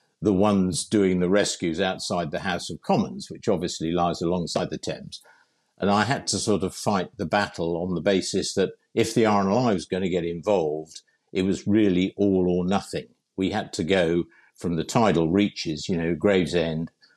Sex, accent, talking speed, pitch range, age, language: male, British, 190 wpm, 85-100 Hz, 50-69, English